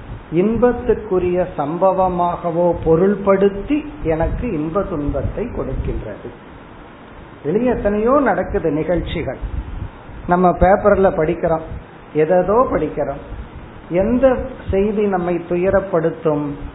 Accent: native